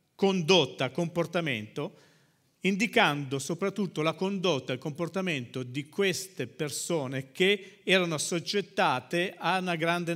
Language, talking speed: Italian, 100 wpm